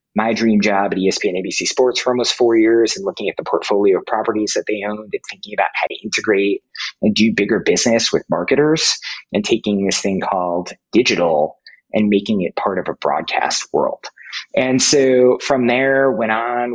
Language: English